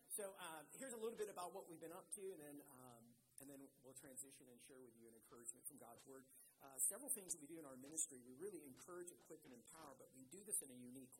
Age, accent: 50-69, American